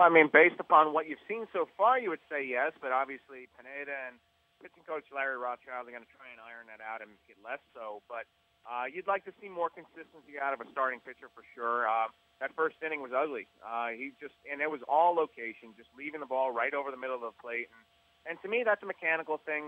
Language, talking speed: English, 245 wpm